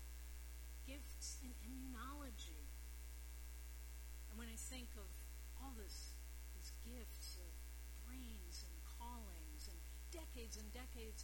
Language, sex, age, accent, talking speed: English, female, 50-69, American, 105 wpm